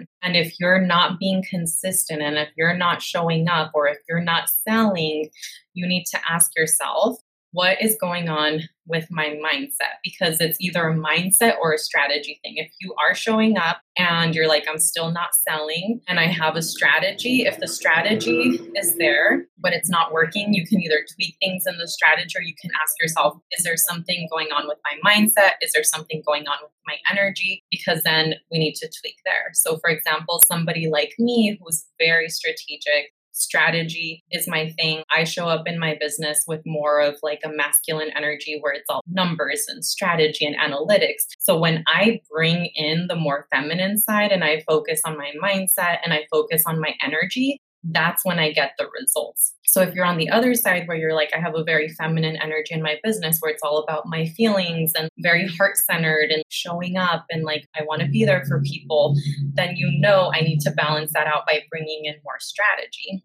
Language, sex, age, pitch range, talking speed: English, female, 20-39, 155-185 Hz, 205 wpm